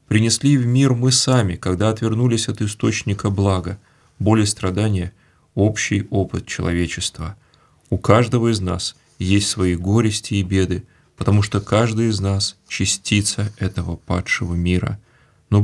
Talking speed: 135 wpm